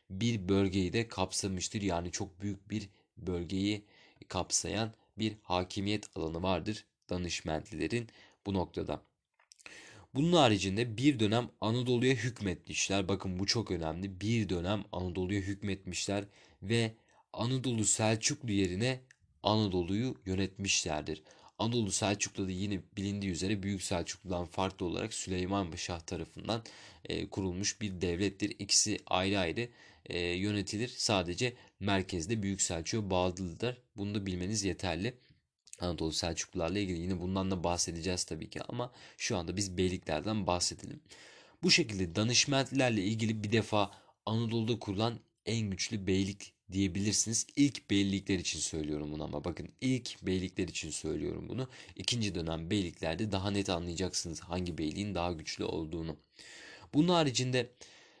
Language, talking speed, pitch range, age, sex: Turkish, 120 wpm, 90-110 Hz, 30-49, male